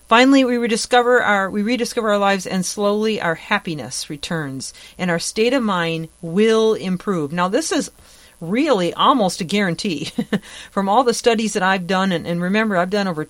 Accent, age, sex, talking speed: American, 40-59, female, 180 wpm